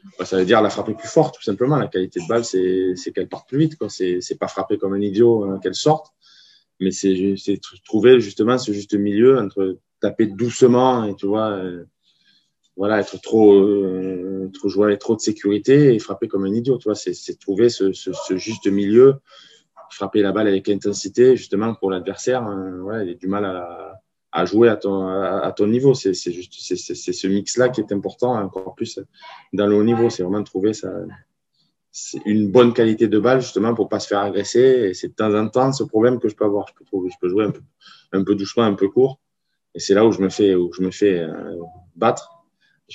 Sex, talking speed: male, 230 wpm